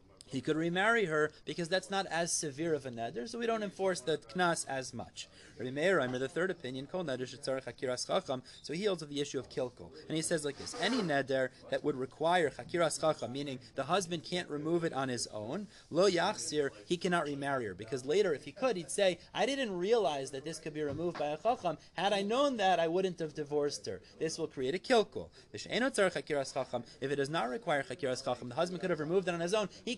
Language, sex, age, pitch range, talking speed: English, male, 30-49, 135-180 Hz, 215 wpm